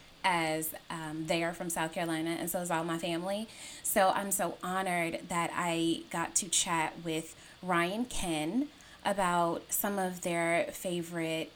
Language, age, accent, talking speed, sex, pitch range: English, 10-29, American, 155 wpm, female, 170-205 Hz